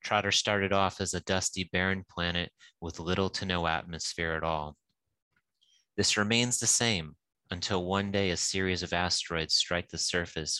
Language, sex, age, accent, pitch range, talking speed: English, male, 30-49, American, 85-100 Hz, 165 wpm